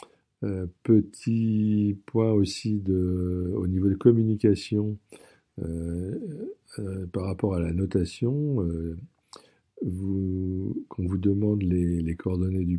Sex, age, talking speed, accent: male, 50-69, 115 wpm, French